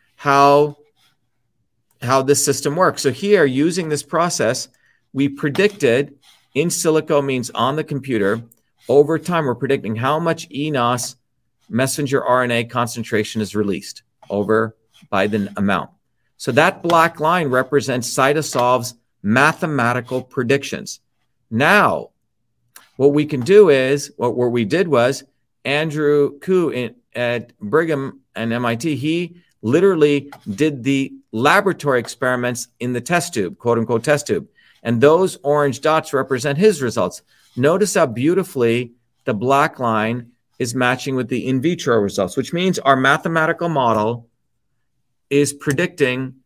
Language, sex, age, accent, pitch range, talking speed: English, male, 50-69, American, 120-150 Hz, 130 wpm